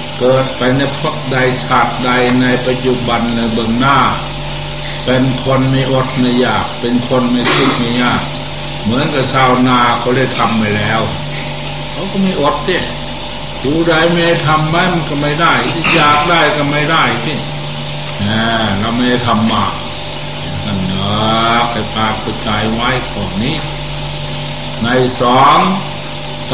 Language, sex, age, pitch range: Thai, male, 60-79, 105-140 Hz